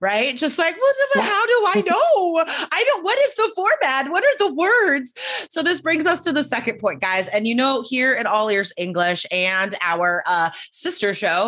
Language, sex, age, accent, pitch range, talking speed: English, female, 30-49, American, 190-280 Hz, 210 wpm